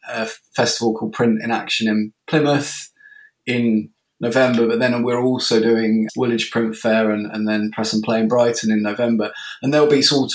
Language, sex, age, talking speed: English, male, 20-39, 185 wpm